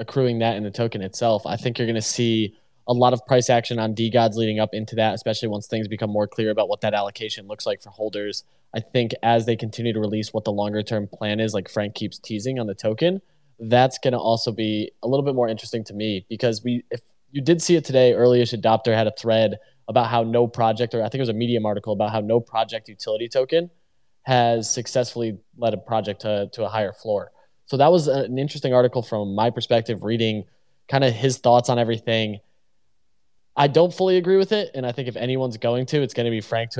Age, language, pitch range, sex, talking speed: 20-39, English, 110-125 Hz, male, 235 wpm